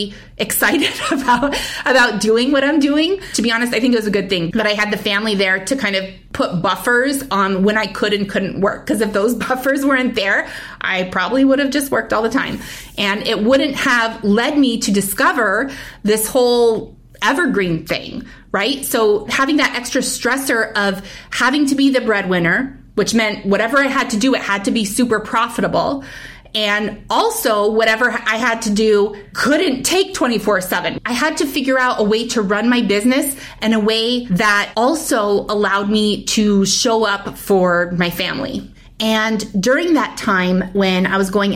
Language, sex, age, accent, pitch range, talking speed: English, female, 30-49, American, 200-260 Hz, 185 wpm